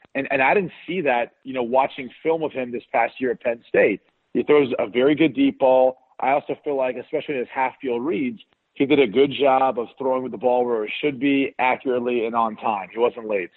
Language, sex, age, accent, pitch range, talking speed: English, male, 40-59, American, 120-140 Hz, 250 wpm